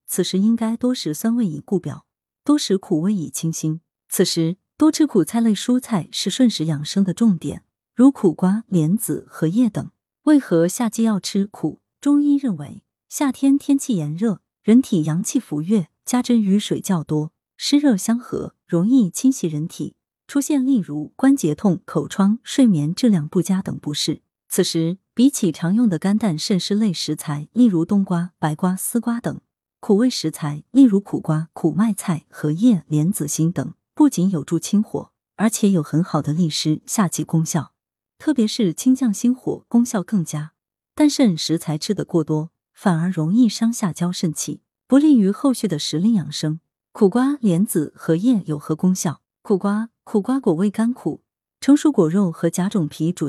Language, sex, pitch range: Chinese, female, 165-235 Hz